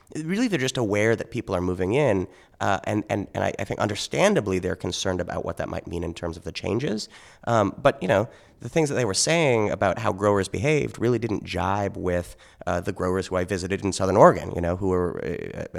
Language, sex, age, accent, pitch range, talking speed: English, male, 30-49, American, 90-140 Hz, 230 wpm